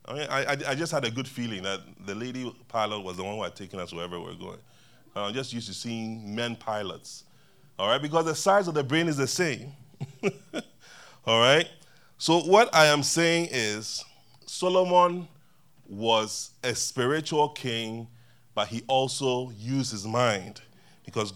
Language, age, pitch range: English, 30-49, 115-160 Hz